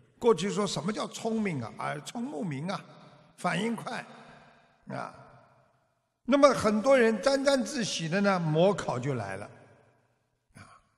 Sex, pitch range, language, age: male, 150-225 Hz, Chinese, 50-69